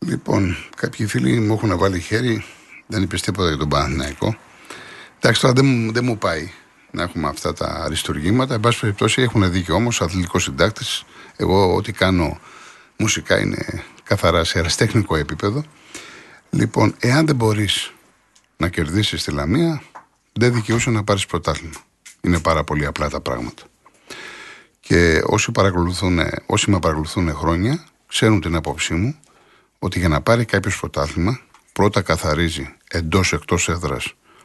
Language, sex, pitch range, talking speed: Greek, male, 80-110 Hz, 140 wpm